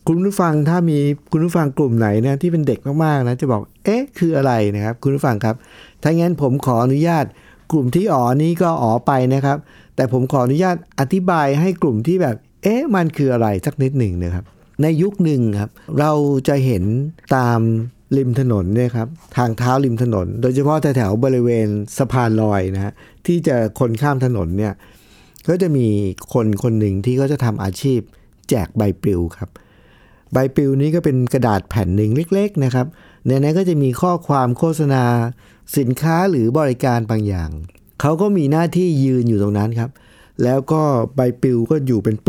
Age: 60-79